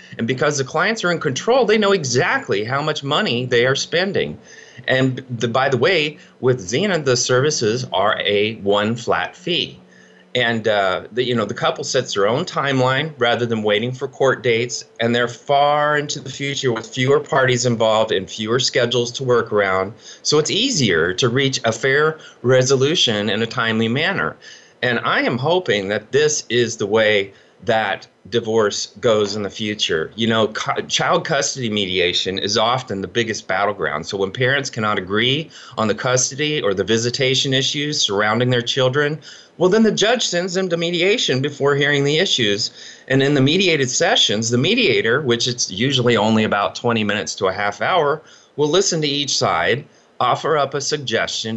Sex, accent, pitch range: male, American, 115-145 Hz